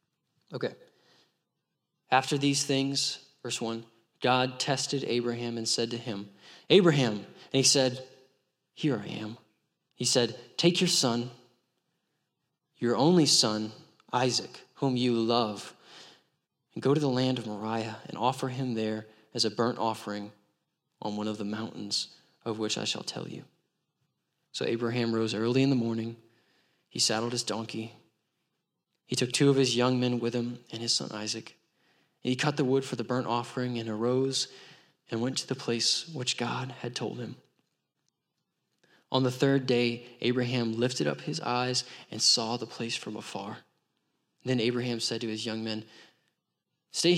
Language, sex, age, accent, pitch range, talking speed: English, male, 20-39, American, 115-135 Hz, 160 wpm